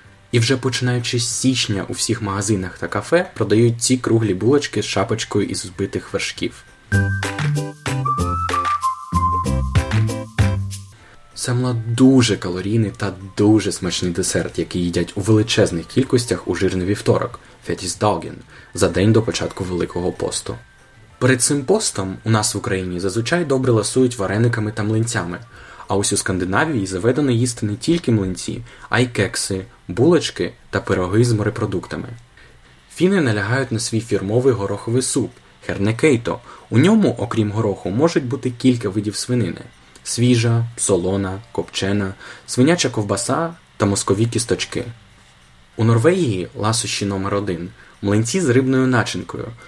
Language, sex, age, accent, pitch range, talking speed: Ukrainian, male, 20-39, native, 95-125 Hz, 135 wpm